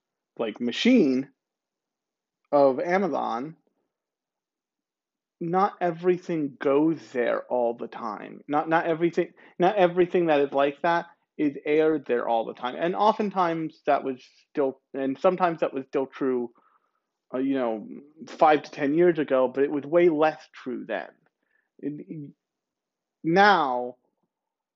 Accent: American